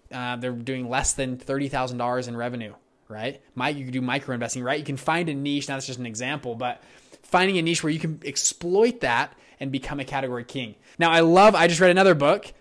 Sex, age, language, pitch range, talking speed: male, 20-39, English, 130-160 Hz, 220 wpm